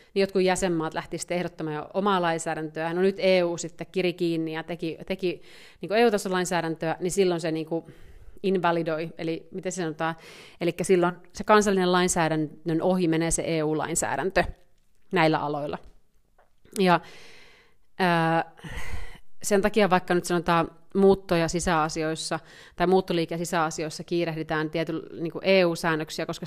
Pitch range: 165-190 Hz